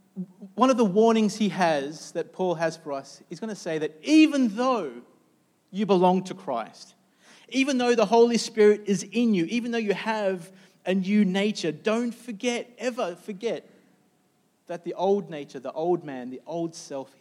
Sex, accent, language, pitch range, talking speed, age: male, Australian, English, 145-205 Hz, 180 wpm, 30-49